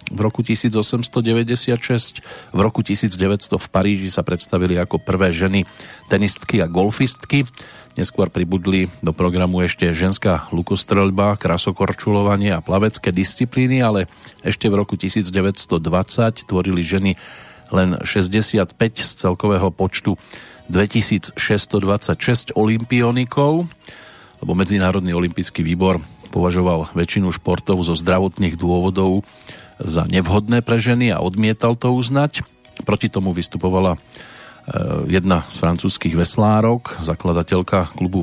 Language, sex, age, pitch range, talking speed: Slovak, male, 40-59, 90-110 Hz, 105 wpm